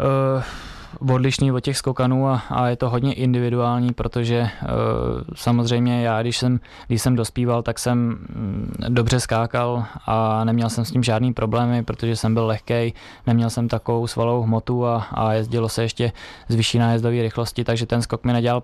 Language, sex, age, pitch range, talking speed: Czech, male, 20-39, 115-120 Hz, 175 wpm